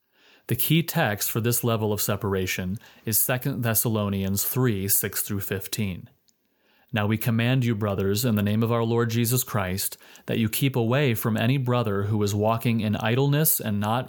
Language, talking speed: English, 170 wpm